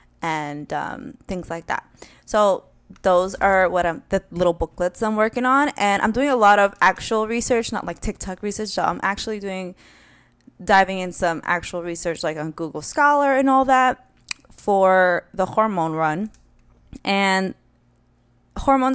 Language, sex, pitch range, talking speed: English, female, 165-205 Hz, 155 wpm